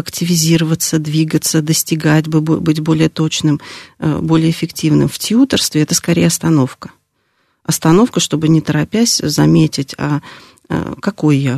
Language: Russian